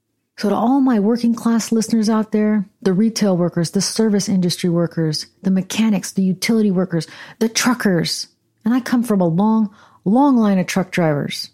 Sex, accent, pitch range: female, American, 180-225 Hz